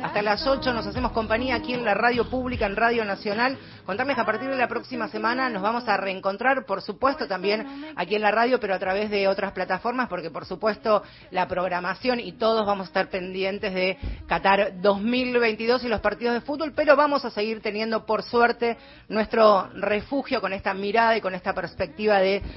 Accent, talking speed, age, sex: Argentinian, 200 wpm, 30-49, female